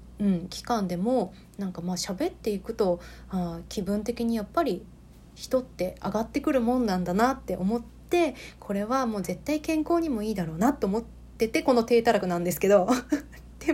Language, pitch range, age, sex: Japanese, 180-250 Hz, 20-39, female